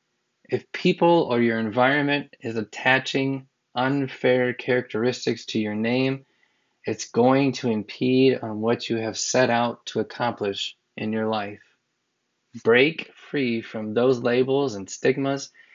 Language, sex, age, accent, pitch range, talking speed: English, male, 20-39, American, 110-130 Hz, 130 wpm